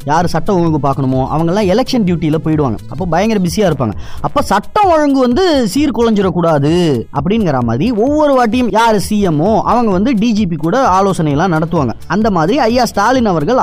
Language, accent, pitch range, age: Tamil, native, 165-235 Hz, 20-39